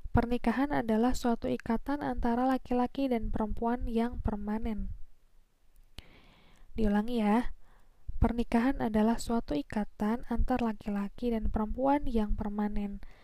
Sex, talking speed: female, 100 wpm